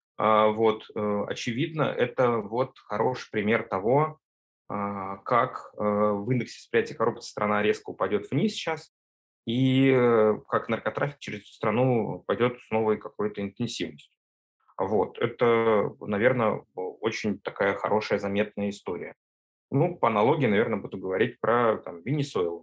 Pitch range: 100-125 Hz